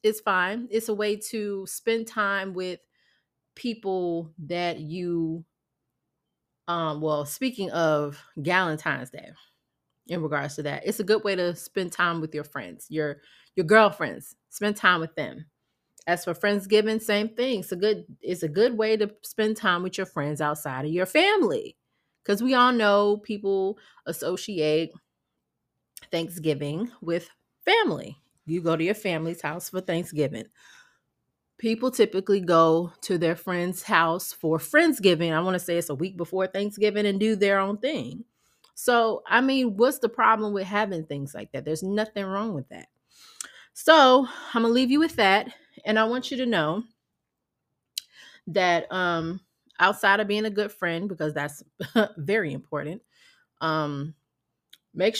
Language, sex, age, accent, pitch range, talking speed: English, female, 30-49, American, 165-220 Hz, 160 wpm